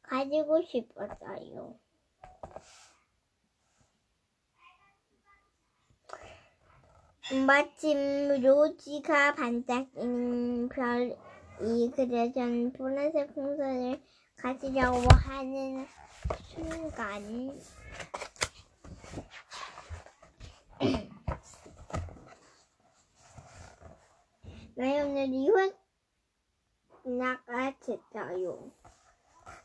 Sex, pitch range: male, 250-320 Hz